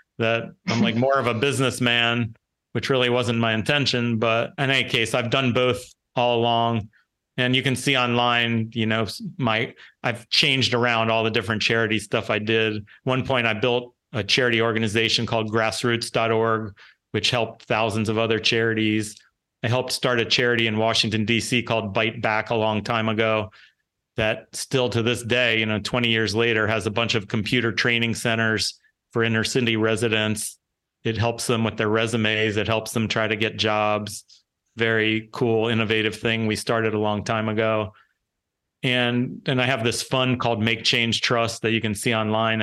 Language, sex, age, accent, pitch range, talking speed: English, male, 40-59, American, 110-120 Hz, 180 wpm